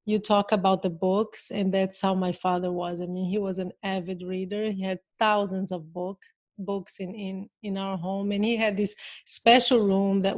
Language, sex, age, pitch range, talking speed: English, female, 30-49, 190-210 Hz, 210 wpm